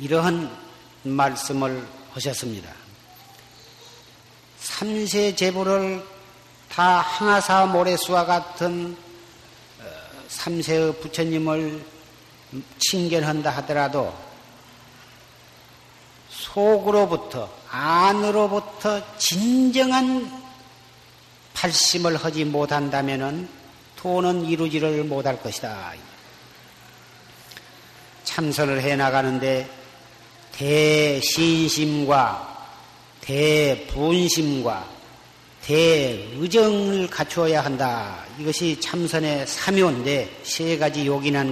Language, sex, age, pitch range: Korean, male, 50-69, 140-185 Hz